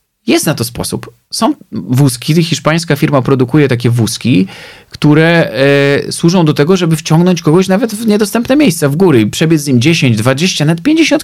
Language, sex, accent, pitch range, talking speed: Polish, male, native, 125-160 Hz, 170 wpm